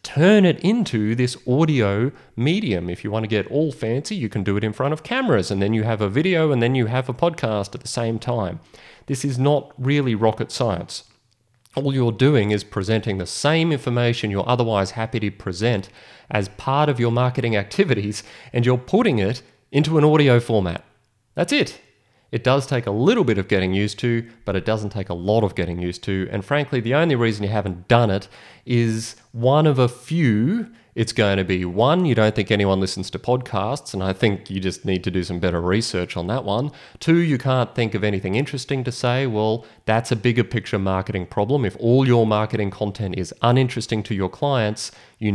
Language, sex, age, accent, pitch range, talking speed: English, male, 30-49, Australian, 100-130 Hz, 210 wpm